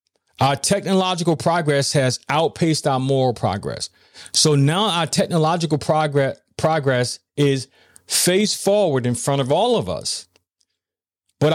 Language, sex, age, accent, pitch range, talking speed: English, male, 40-59, American, 125-175 Hz, 120 wpm